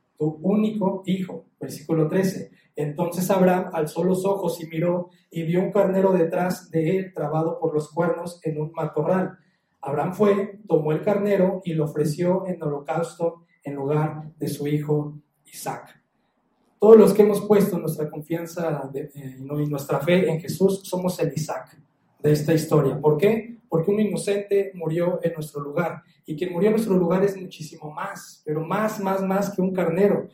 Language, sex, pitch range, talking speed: Spanish, male, 160-190 Hz, 165 wpm